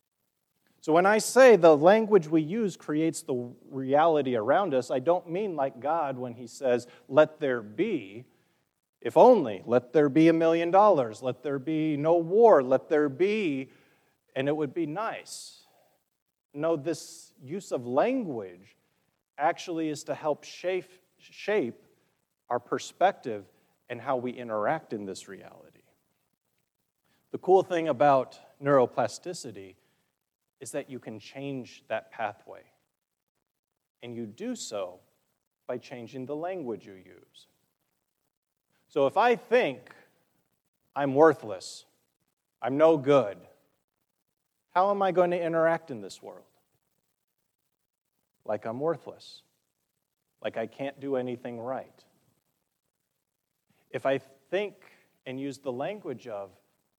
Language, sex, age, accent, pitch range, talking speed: English, male, 40-59, American, 125-170 Hz, 130 wpm